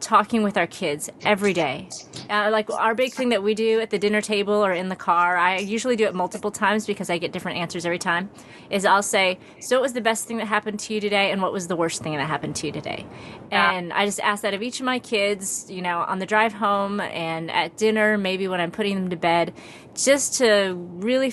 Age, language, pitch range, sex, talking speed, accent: 30-49, English, 175-215 Hz, female, 250 wpm, American